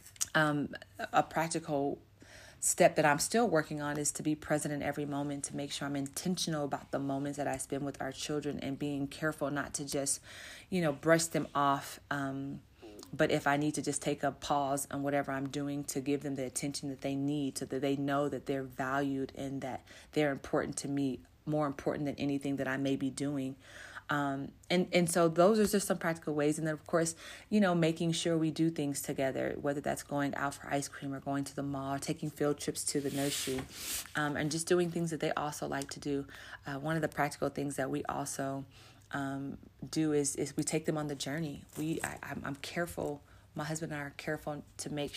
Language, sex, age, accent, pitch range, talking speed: English, female, 30-49, American, 140-150 Hz, 225 wpm